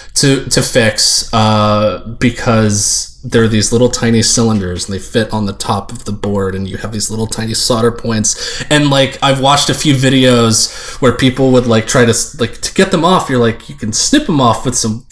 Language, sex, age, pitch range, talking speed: English, male, 20-39, 110-145 Hz, 215 wpm